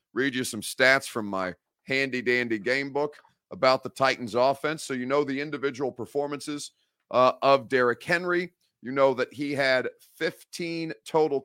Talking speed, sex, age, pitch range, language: 155 wpm, male, 40-59, 110-145 Hz, English